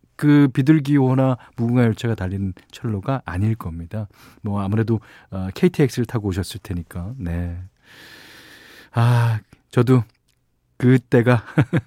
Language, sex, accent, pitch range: Korean, male, native, 105-140 Hz